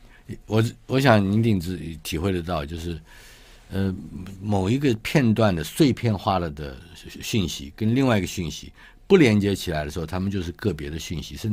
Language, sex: Chinese, male